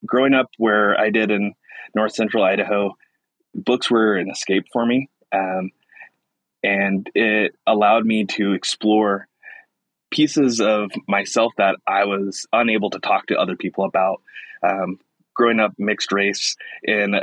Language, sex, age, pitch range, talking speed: English, male, 20-39, 100-115 Hz, 145 wpm